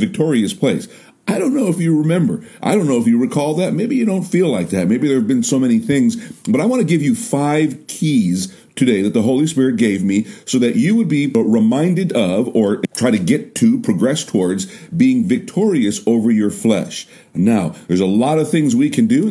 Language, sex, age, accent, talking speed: English, male, 50-69, American, 225 wpm